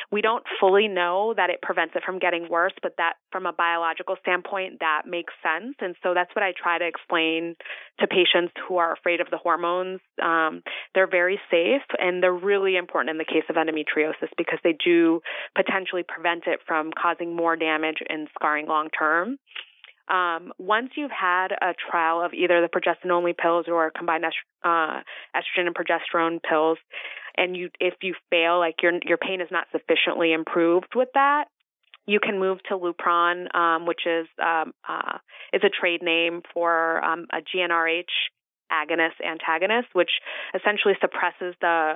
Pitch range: 165-185 Hz